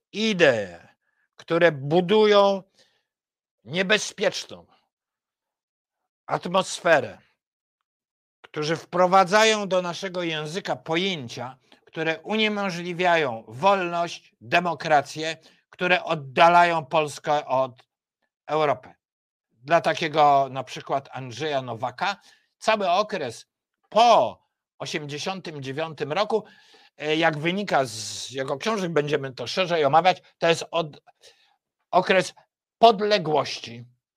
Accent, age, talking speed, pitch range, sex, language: native, 50-69, 75 wpm, 145-190 Hz, male, Polish